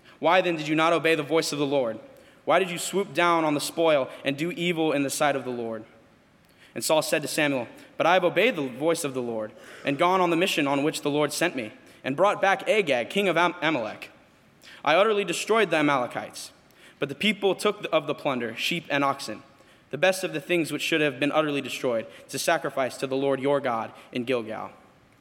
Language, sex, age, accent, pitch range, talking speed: English, male, 20-39, American, 135-170 Hz, 225 wpm